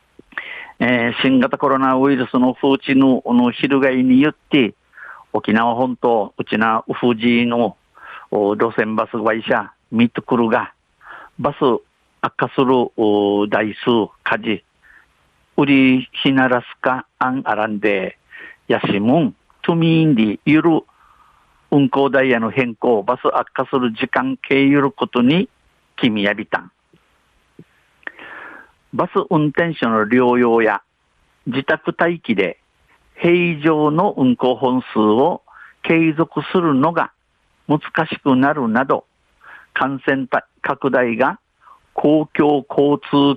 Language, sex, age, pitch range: Japanese, male, 50-69, 120-145 Hz